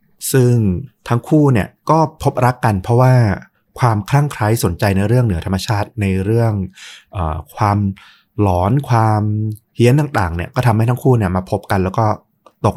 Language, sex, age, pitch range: Thai, male, 20-39, 95-125 Hz